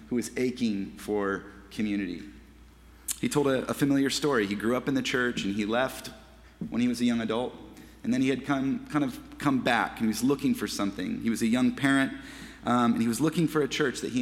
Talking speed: 235 wpm